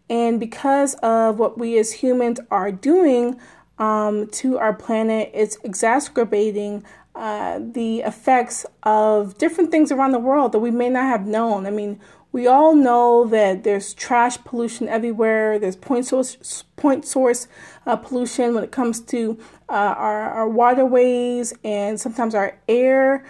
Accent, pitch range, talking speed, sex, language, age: American, 220-260 Hz, 150 wpm, female, English, 30-49